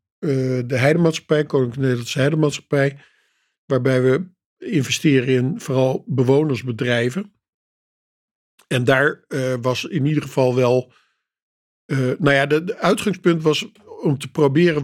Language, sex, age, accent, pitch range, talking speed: Dutch, male, 50-69, Dutch, 130-150 Hz, 120 wpm